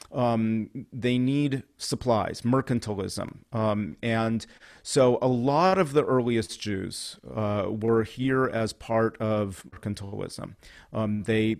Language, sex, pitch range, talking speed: English, male, 105-120 Hz, 120 wpm